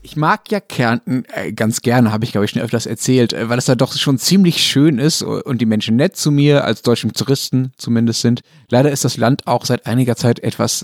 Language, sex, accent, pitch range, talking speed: German, male, German, 110-145 Hz, 225 wpm